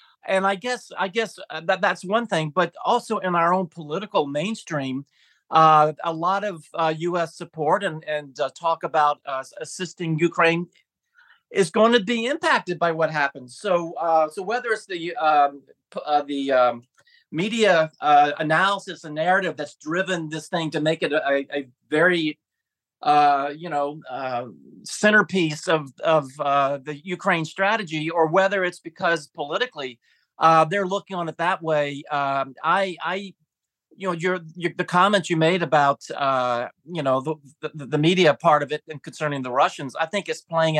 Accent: American